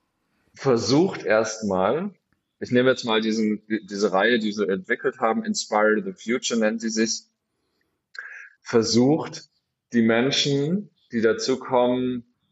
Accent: German